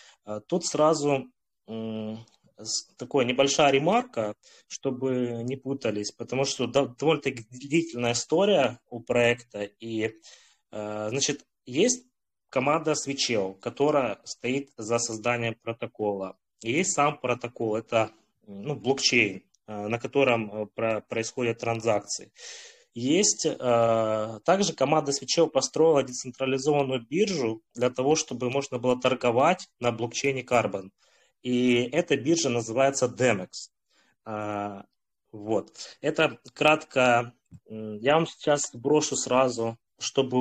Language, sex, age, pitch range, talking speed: Russian, male, 20-39, 115-140 Hz, 100 wpm